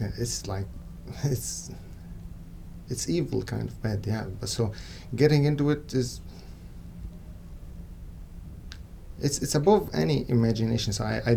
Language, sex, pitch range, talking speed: English, male, 85-110 Hz, 120 wpm